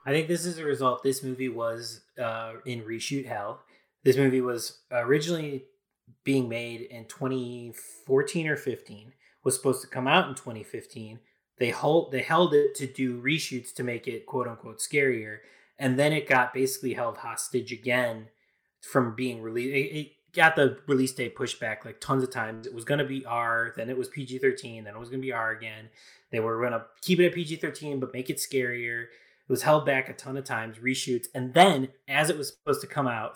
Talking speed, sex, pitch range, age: 205 wpm, male, 115-135 Hz, 20-39